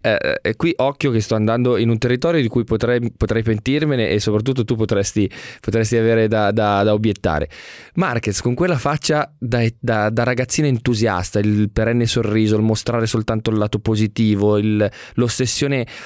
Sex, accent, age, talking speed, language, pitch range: male, native, 20-39, 165 wpm, Italian, 110-130 Hz